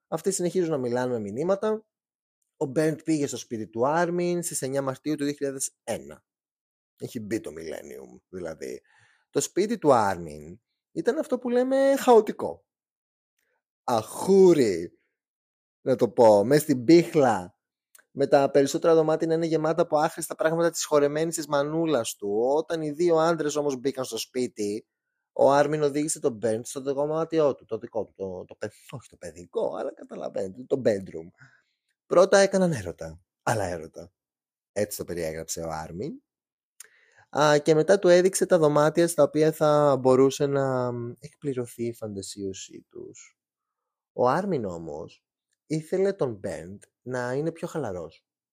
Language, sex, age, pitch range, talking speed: Greek, male, 30-49, 135-175 Hz, 145 wpm